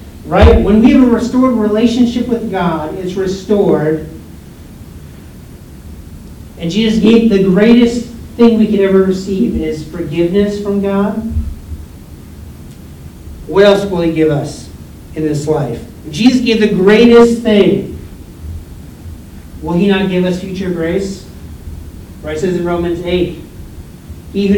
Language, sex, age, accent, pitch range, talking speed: English, male, 40-59, American, 140-200 Hz, 135 wpm